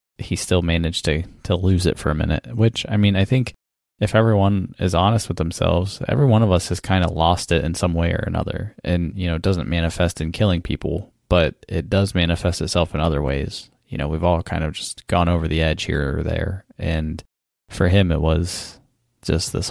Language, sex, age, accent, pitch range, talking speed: English, male, 20-39, American, 85-100 Hz, 220 wpm